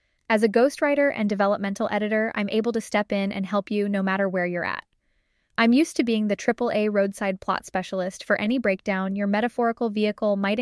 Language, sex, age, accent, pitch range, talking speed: English, female, 10-29, American, 195-235 Hz, 200 wpm